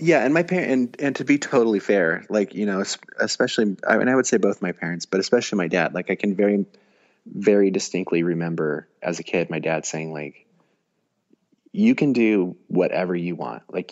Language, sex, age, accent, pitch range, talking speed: English, male, 30-49, American, 85-105 Hz, 205 wpm